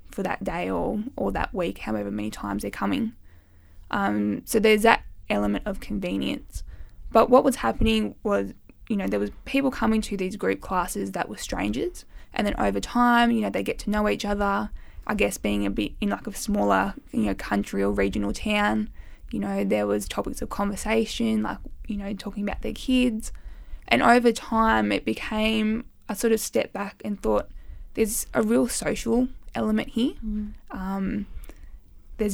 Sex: female